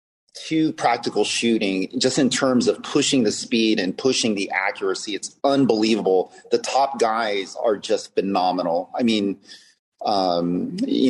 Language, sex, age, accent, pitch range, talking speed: English, male, 30-49, American, 105-155 Hz, 140 wpm